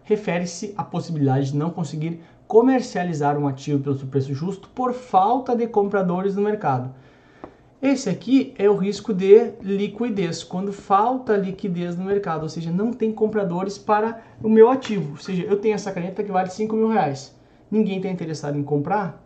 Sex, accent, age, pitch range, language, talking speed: male, Brazilian, 20-39, 150-200 Hz, Portuguese, 175 wpm